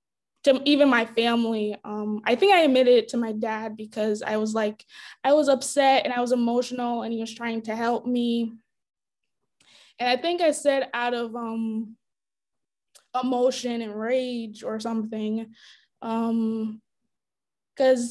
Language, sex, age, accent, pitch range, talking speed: English, female, 20-39, American, 220-245 Hz, 150 wpm